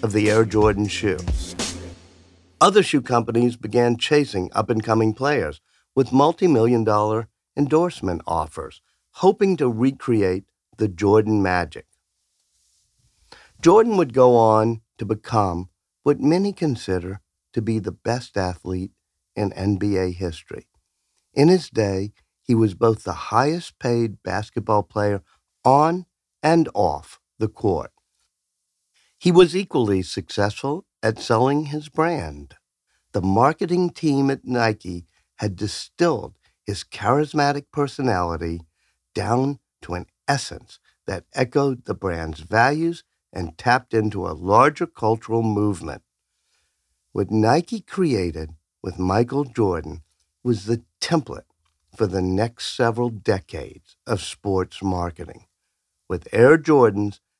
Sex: male